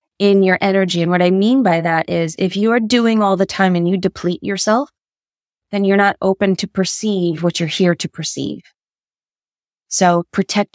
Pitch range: 175-200 Hz